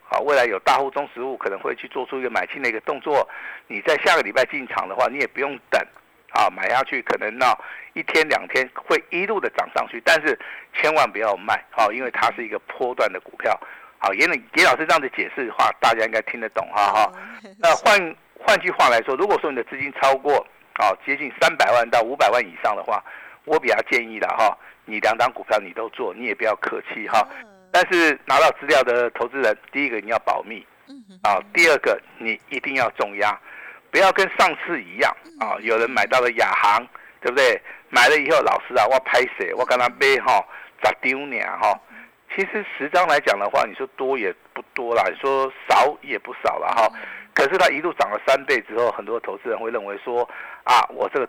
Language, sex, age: Chinese, male, 50-69